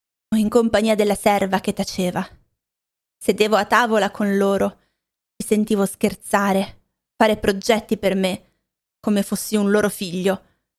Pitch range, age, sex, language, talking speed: 195-230 Hz, 20-39, female, Italian, 130 wpm